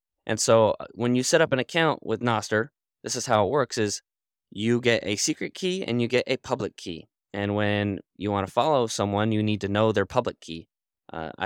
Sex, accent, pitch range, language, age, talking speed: male, American, 95-115 Hz, English, 20-39, 220 wpm